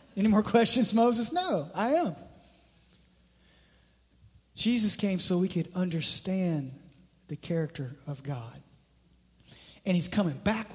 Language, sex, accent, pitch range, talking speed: English, male, American, 180-240 Hz, 115 wpm